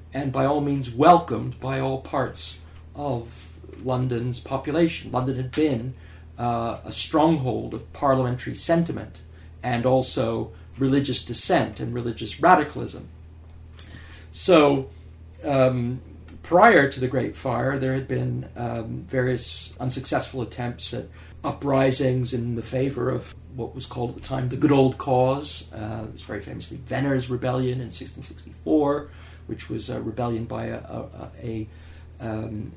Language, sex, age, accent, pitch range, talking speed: English, male, 40-59, American, 95-130 Hz, 140 wpm